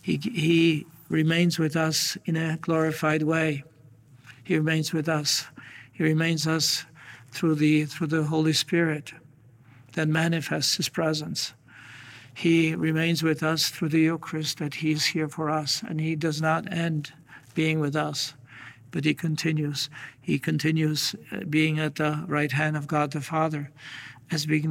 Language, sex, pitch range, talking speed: English, male, 150-160 Hz, 155 wpm